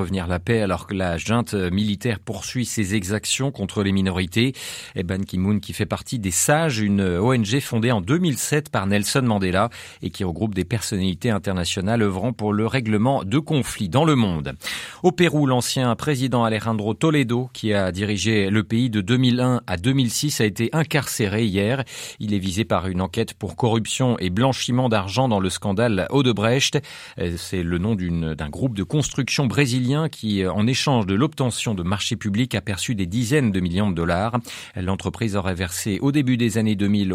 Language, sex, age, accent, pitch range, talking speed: French, male, 40-59, French, 100-130 Hz, 180 wpm